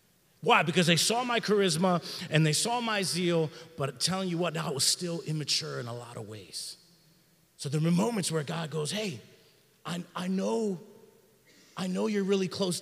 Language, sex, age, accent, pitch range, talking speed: English, male, 30-49, American, 145-185 Hz, 185 wpm